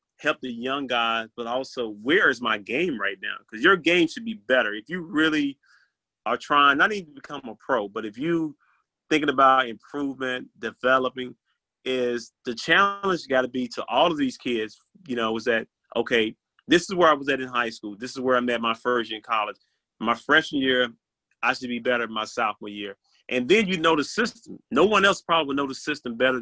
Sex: male